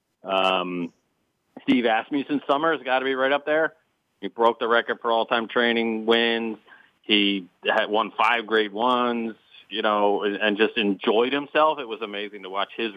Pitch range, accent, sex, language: 100-125 Hz, American, male, English